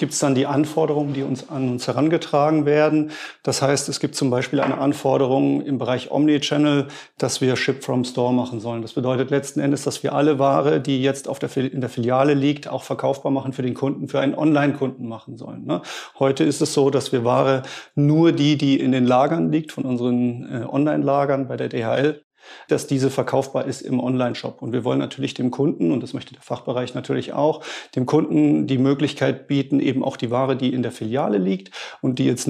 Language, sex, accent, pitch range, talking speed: German, male, German, 125-145 Hz, 210 wpm